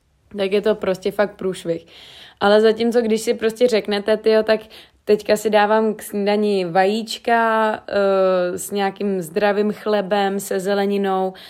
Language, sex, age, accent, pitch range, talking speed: Czech, female, 20-39, native, 195-215 Hz, 140 wpm